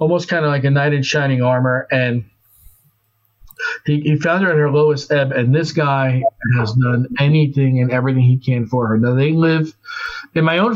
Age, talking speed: 40-59, 200 wpm